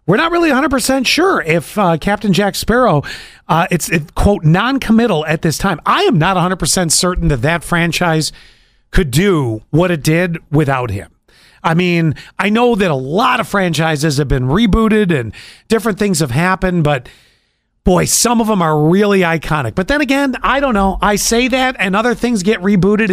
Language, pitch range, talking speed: English, 155-205 Hz, 185 wpm